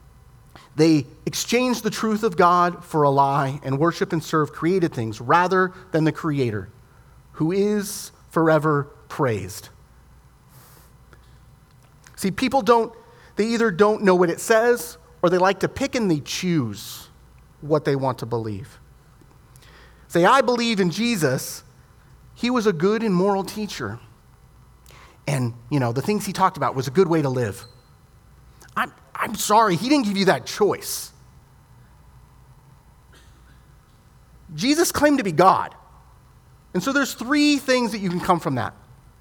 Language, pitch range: English, 130-215 Hz